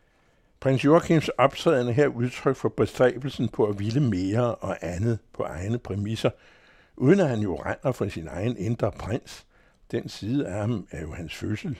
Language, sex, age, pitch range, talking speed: Danish, male, 60-79, 105-130 Hz, 170 wpm